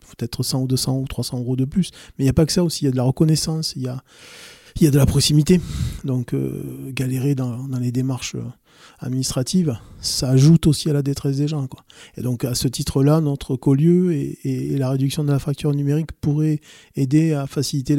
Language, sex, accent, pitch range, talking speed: French, male, French, 125-145 Hz, 225 wpm